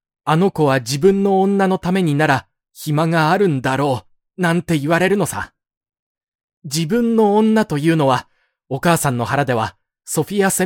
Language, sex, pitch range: Japanese, male, 125-170 Hz